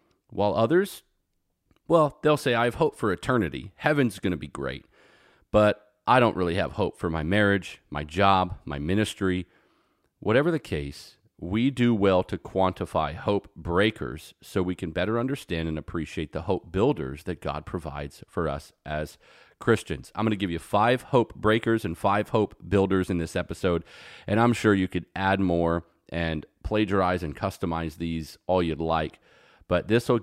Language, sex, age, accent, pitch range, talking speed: English, male, 40-59, American, 85-105 Hz, 175 wpm